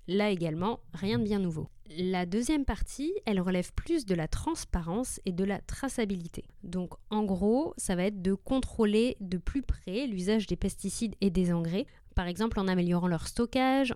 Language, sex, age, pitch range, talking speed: French, female, 20-39, 180-230 Hz, 180 wpm